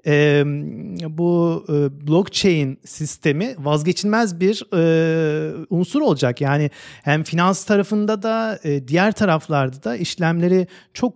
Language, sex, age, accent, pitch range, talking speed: Turkish, male, 40-59, native, 150-190 Hz, 115 wpm